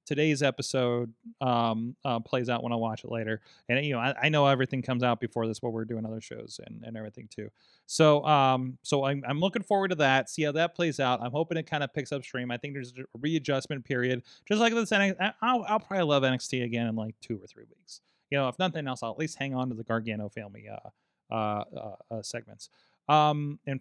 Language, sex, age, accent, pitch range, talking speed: English, male, 30-49, American, 115-155 Hz, 235 wpm